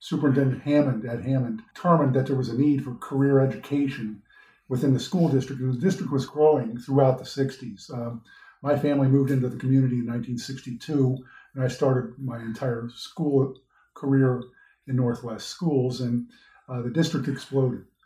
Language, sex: English, male